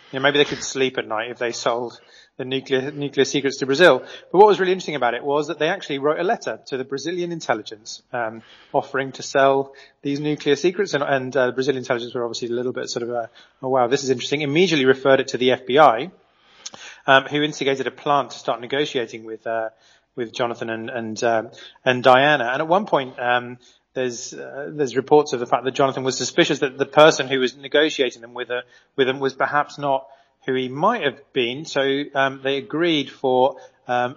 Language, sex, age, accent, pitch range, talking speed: English, male, 30-49, British, 120-145 Hz, 220 wpm